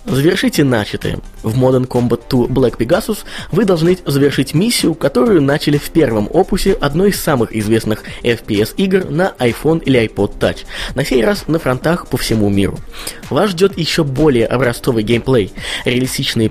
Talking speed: 155 wpm